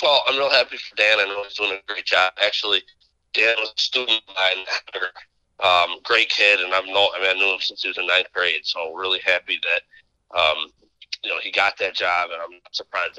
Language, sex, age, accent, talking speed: English, male, 30-49, American, 235 wpm